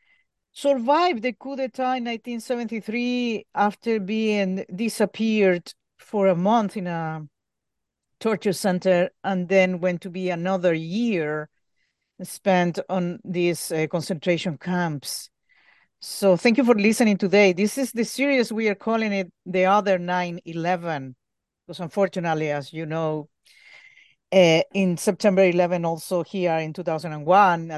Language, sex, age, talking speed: English, female, 50-69, 125 wpm